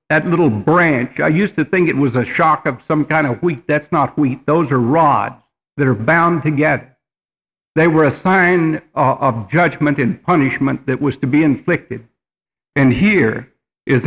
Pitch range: 150-185 Hz